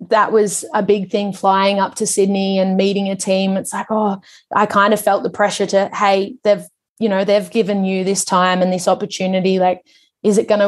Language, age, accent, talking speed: English, 20-39, Australian, 220 wpm